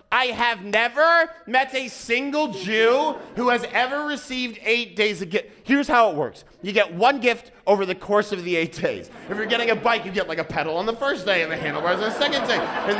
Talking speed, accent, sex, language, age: 240 wpm, American, male, English, 30-49